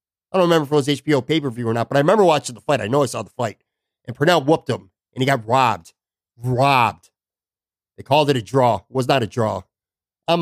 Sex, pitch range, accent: male, 115-150 Hz, American